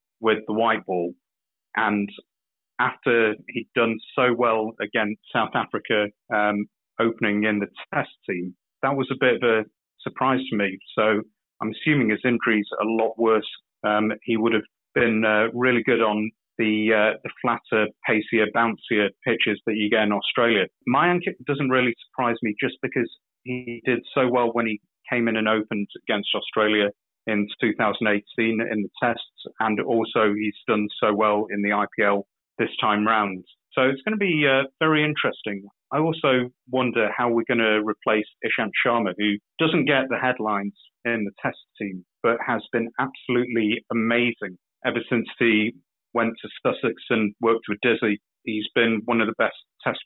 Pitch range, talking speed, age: 105-120 Hz, 170 wpm, 30-49